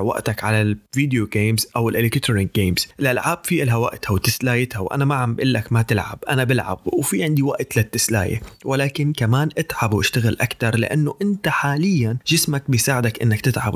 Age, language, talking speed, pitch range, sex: 20-39, Arabic, 155 wpm, 110-150 Hz, male